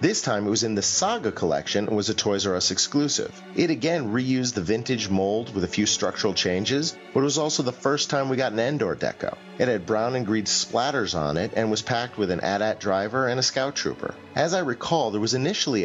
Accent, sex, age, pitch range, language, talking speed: American, male, 30-49, 95-130 Hz, English, 240 wpm